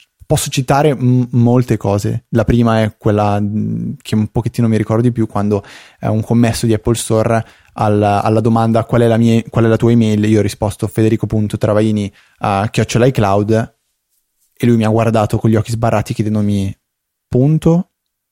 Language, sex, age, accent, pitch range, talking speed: Italian, male, 20-39, native, 110-125 Hz, 165 wpm